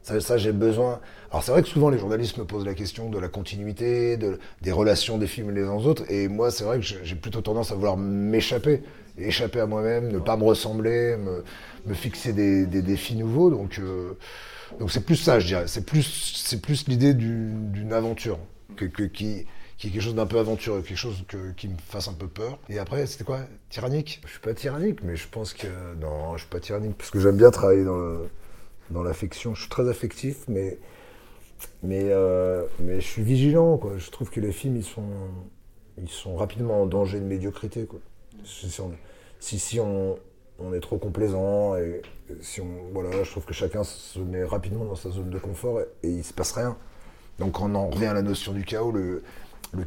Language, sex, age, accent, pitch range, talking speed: French, male, 30-49, French, 95-115 Hz, 225 wpm